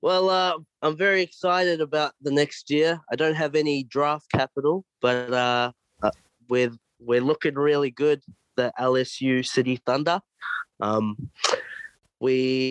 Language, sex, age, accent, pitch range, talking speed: English, male, 20-39, Australian, 110-140 Hz, 135 wpm